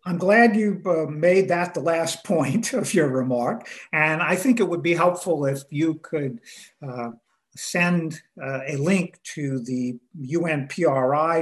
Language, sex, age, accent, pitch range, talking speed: English, male, 50-69, American, 135-170 Hz, 150 wpm